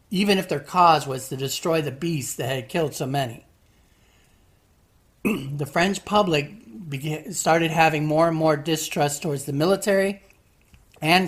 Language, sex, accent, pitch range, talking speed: English, male, American, 140-180 Hz, 150 wpm